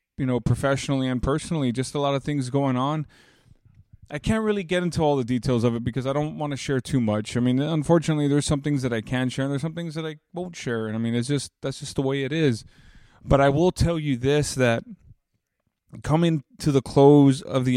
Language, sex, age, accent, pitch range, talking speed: English, male, 20-39, American, 115-145 Hz, 245 wpm